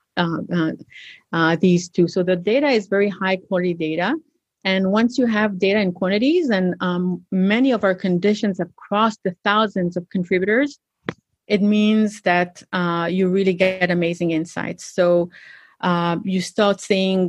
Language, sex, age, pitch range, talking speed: English, female, 30-49, 180-215 Hz, 160 wpm